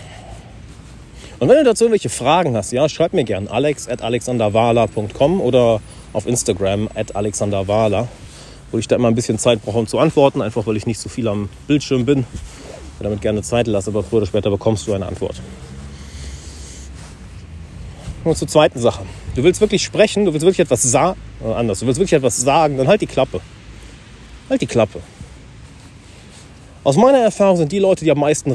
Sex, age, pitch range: male, 30-49, 105-155 Hz